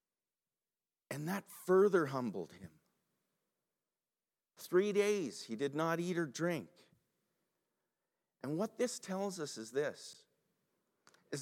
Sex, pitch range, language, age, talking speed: male, 125-175 Hz, English, 50-69, 110 wpm